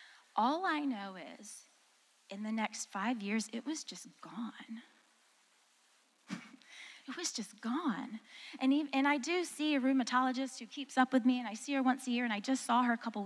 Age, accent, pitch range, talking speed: 20-39, American, 210-280 Hz, 200 wpm